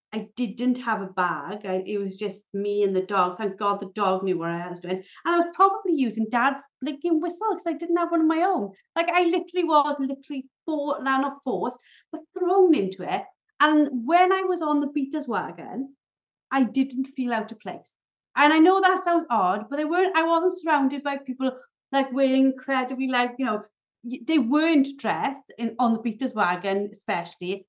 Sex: female